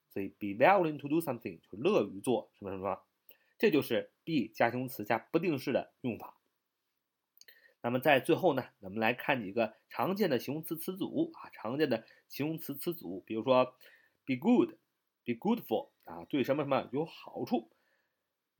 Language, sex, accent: Chinese, male, native